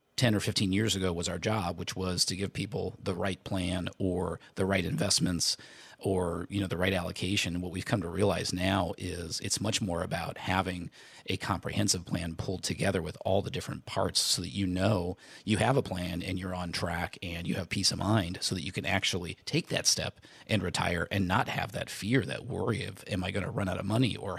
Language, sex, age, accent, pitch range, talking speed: English, male, 30-49, American, 90-110 Hz, 230 wpm